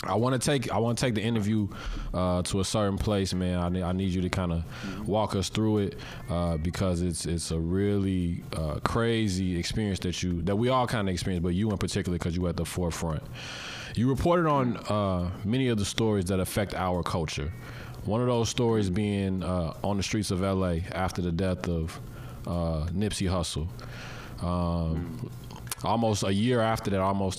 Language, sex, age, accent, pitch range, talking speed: English, male, 20-39, American, 90-110 Hz, 200 wpm